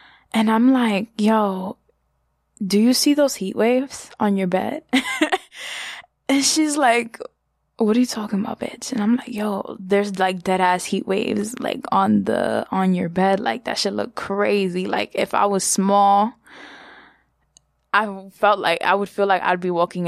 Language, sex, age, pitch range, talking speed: English, female, 10-29, 190-230 Hz, 175 wpm